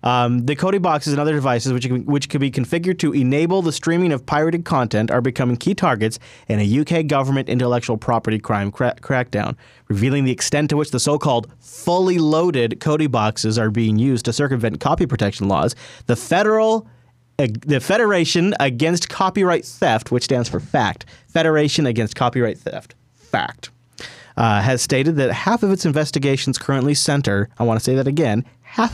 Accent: American